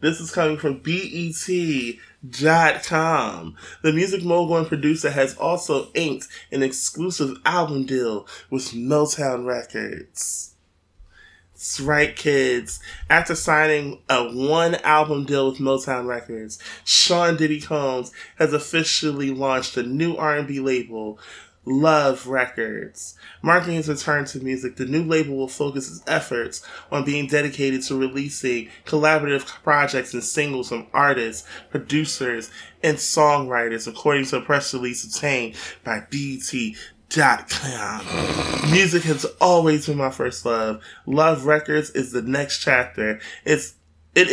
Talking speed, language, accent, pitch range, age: 125 wpm, English, American, 125-155 Hz, 20-39